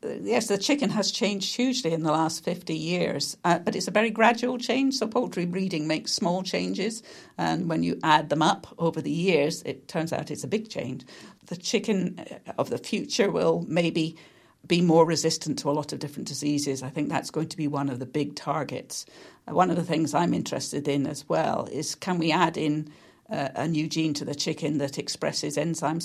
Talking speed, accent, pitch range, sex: 210 wpm, British, 150-190 Hz, female